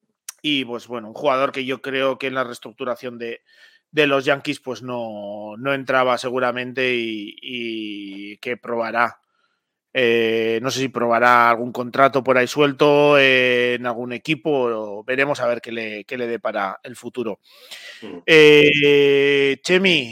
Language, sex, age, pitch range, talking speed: Spanish, male, 30-49, 130-155 Hz, 160 wpm